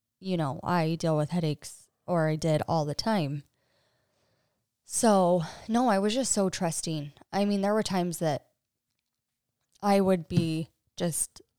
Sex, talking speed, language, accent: female, 150 wpm, English, American